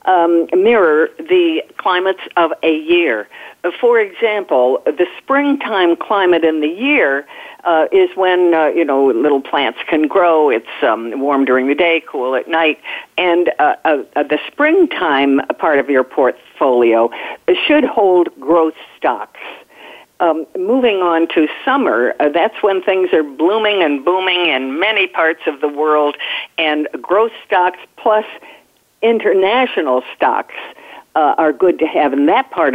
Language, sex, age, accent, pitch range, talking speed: English, female, 50-69, American, 145-225 Hz, 150 wpm